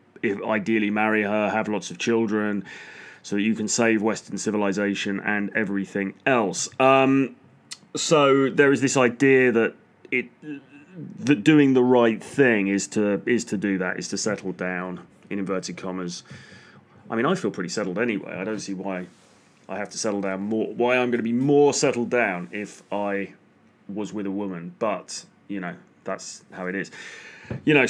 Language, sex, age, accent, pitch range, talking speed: English, male, 30-49, British, 100-125 Hz, 175 wpm